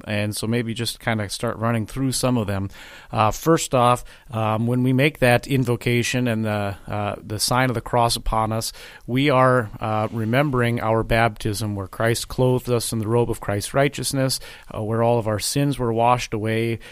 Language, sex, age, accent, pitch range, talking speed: English, male, 30-49, American, 110-130 Hz, 200 wpm